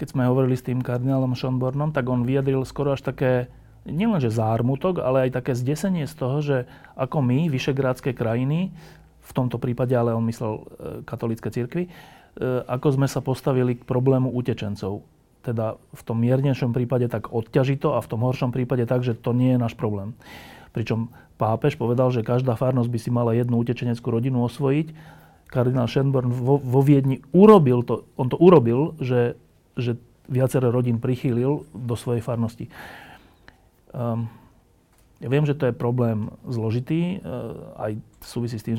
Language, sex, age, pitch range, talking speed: Slovak, male, 30-49, 120-140 Hz, 160 wpm